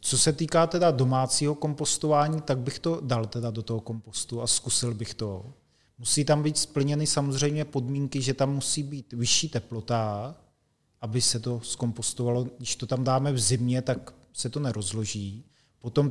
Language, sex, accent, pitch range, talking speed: Czech, male, native, 120-145 Hz, 160 wpm